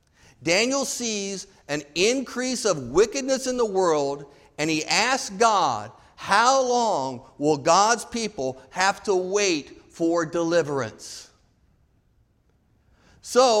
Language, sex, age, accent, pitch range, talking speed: English, male, 50-69, American, 145-210 Hz, 105 wpm